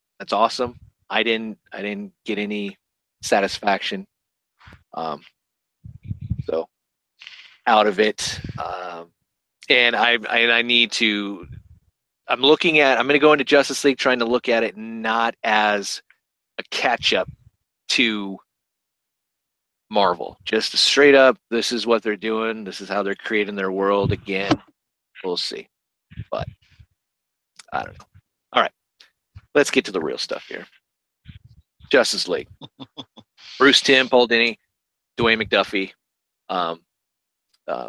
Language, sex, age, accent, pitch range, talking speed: English, male, 30-49, American, 100-120 Hz, 135 wpm